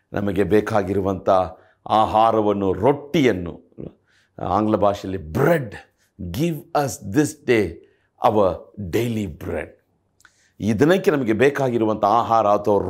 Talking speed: 90 wpm